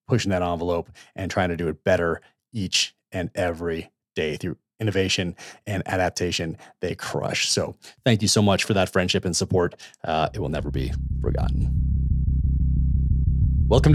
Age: 30-49